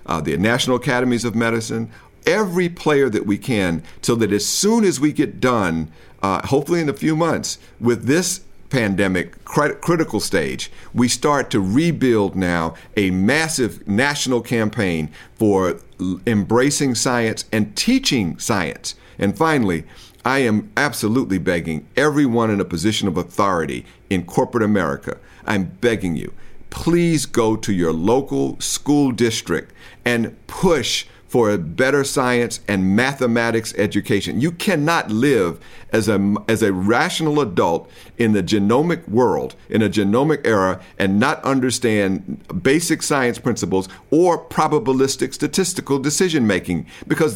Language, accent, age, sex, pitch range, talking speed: English, American, 50-69, male, 100-135 Hz, 135 wpm